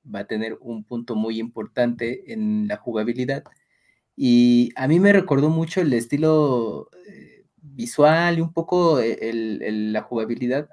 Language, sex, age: Spanish, male, 20-39